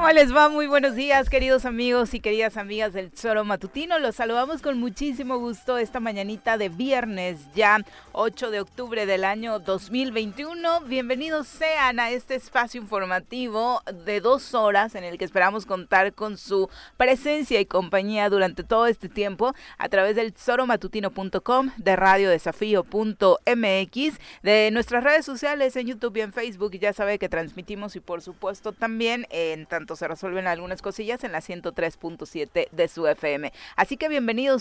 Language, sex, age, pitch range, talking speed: Spanish, female, 30-49, 180-245 Hz, 160 wpm